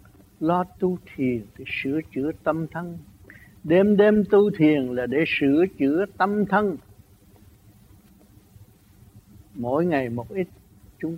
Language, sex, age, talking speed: Vietnamese, male, 60-79, 125 wpm